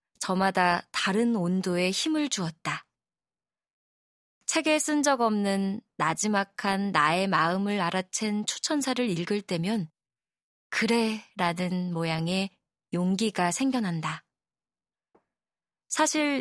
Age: 20-39